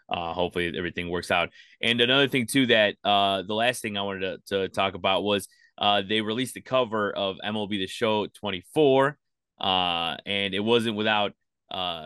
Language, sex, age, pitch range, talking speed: English, male, 20-39, 100-120 Hz, 185 wpm